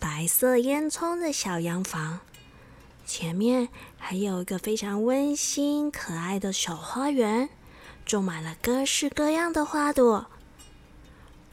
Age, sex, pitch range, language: 20-39, female, 185-265 Hz, Chinese